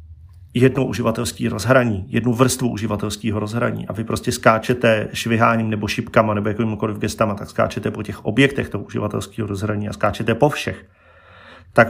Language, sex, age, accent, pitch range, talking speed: Czech, male, 40-59, native, 105-120 Hz, 150 wpm